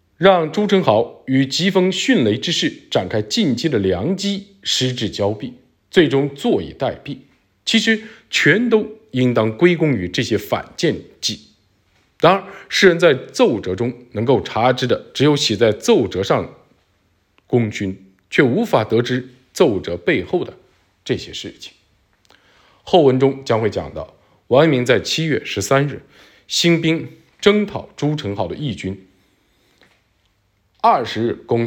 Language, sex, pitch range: Chinese, male, 110-165 Hz